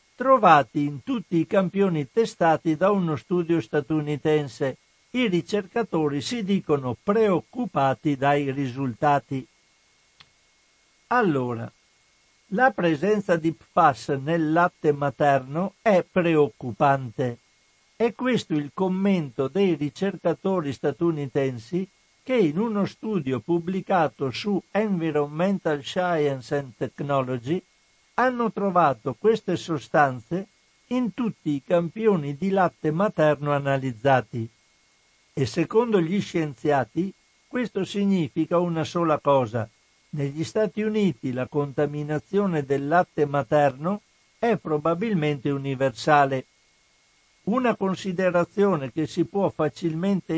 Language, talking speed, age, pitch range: Italian, 100 wpm, 60-79, 145-195 Hz